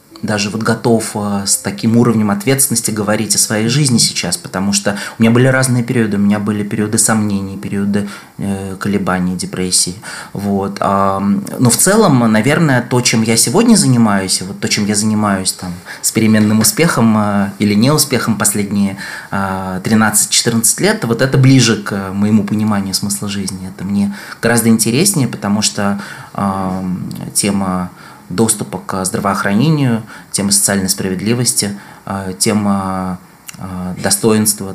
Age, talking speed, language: 20-39, 130 wpm, Russian